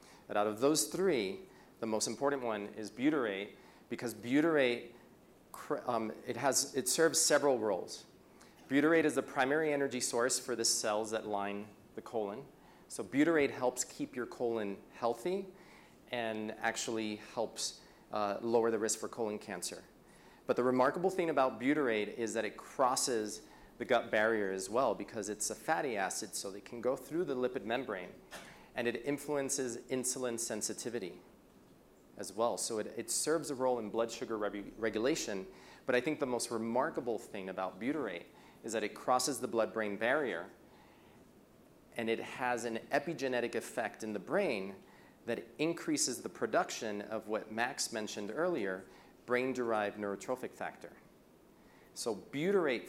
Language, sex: English, male